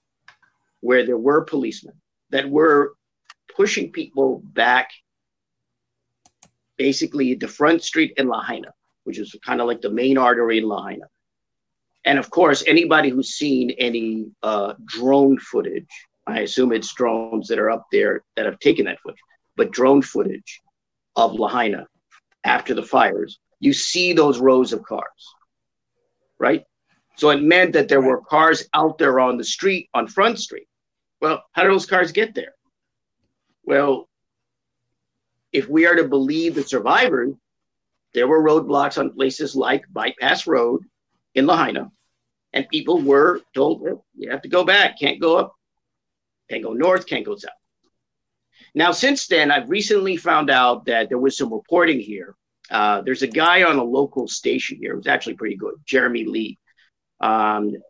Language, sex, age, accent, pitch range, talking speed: English, male, 50-69, American, 125-180 Hz, 160 wpm